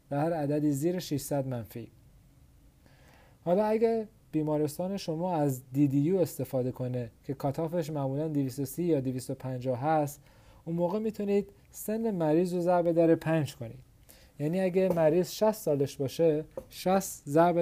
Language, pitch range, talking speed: Persian, 135-170 Hz, 135 wpm